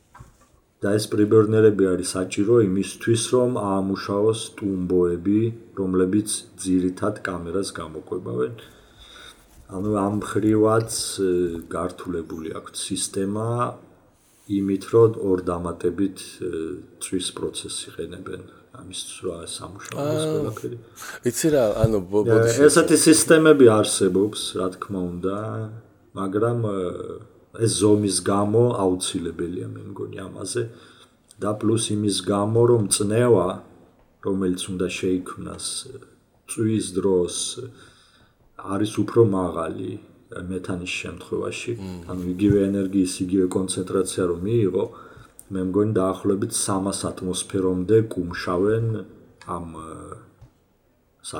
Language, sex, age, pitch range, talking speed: English, male, 40-59, 90-110 Hz, 70 wpm